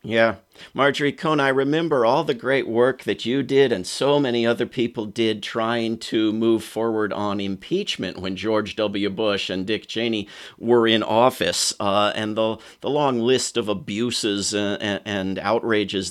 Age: 50-69